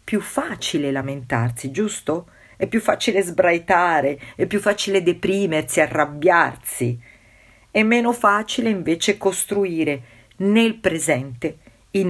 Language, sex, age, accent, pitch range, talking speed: Italian, female, 50-69, native, 120-195 Hz, 100 wpm